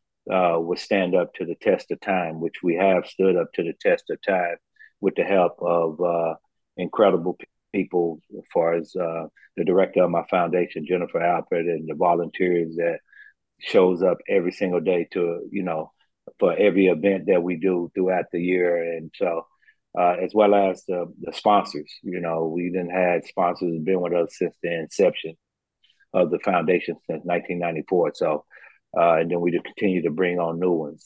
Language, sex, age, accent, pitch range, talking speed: English, male, 40-59, American, 85-95 Hz, 190 wpm